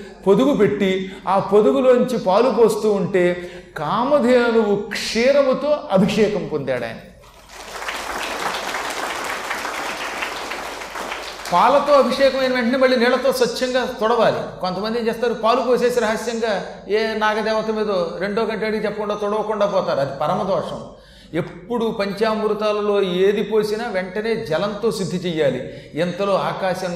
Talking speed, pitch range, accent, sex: 100 wpm, 165-220 Hz, native, male